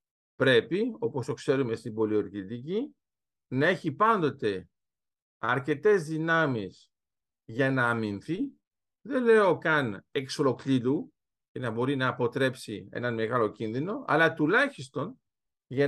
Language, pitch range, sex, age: Greek, 130-185 Hz, male, 50-69